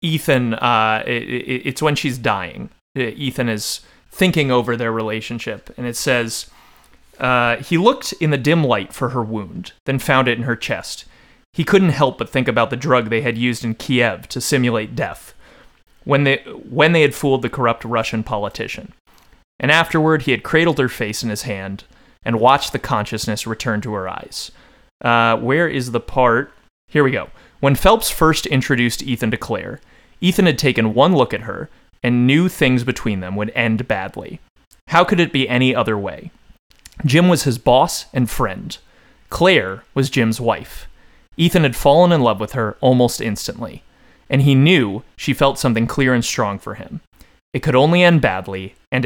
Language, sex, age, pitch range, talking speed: English, male, 30-49, 115-145 Hz, 180 wpm